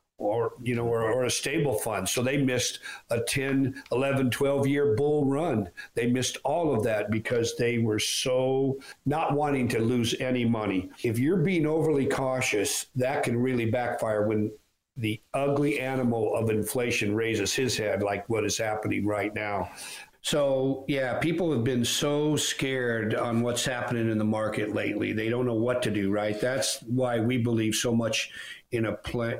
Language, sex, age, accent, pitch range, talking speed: English, male, 50-69, American, 115-140 Hz, 180 wpm